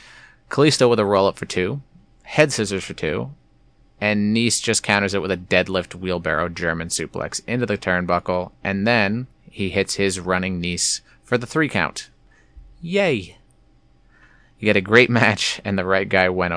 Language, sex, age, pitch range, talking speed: English, male, 30-49, 90-115 Hz, 165 wpm